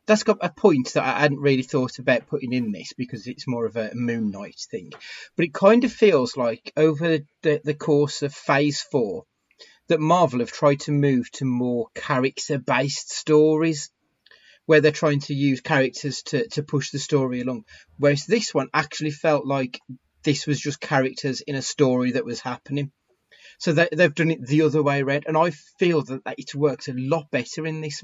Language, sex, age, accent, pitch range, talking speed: English, male, 30-49, British, 130-160 Hz, 200 wpm